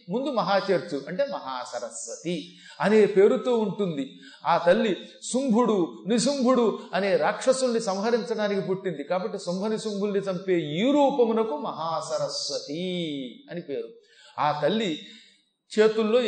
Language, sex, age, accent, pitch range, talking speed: Telugu, male, 40-59, native, 175-225 Hz, 100 wpm